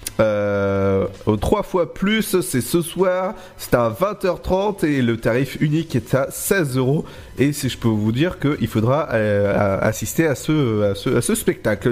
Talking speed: 175 wpm